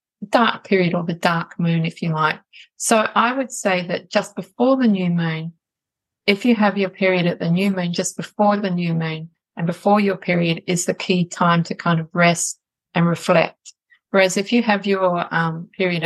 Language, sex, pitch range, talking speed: English, female, 170-195 Hz, 200 wpm